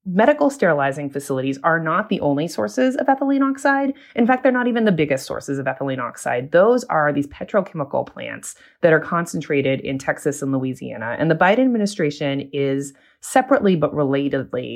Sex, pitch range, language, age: female, 135-175 Hz, English, 20-39